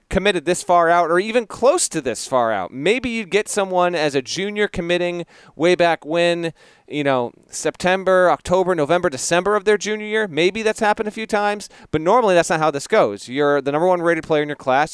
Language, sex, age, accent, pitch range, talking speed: English, male, 30-49, American, 130-175 Hz, 215 wpm